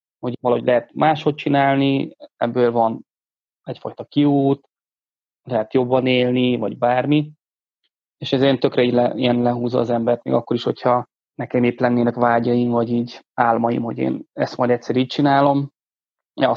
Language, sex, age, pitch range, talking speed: Hungarian, male, 20-39, 120-135 Hz, 145 wpm